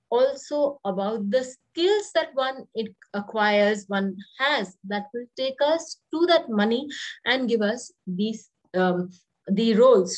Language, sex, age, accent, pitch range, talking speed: English, female, 30-49, Indian, 205-270 Hz, 140 wpm